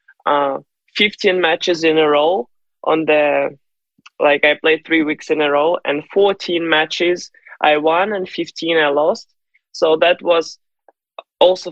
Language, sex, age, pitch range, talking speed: English, male, 20-39, 155-175 Hz, 150 wpm